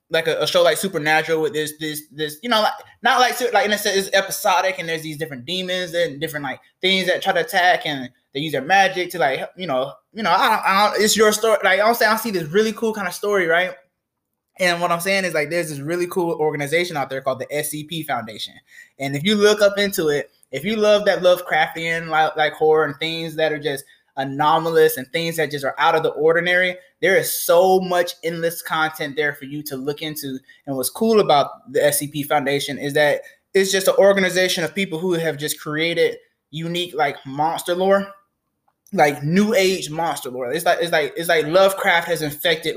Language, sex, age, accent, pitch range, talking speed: English, male, 20-39, American, 150-195 Hz, 225 wpm